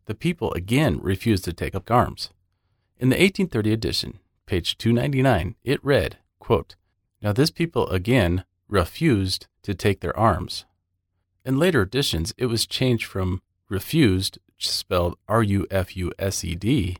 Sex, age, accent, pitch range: male, 40-59, American, 90-120 Hz